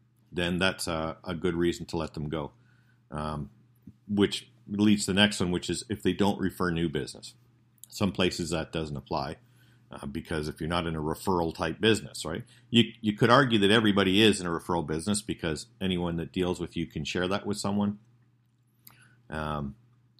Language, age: English, 50-69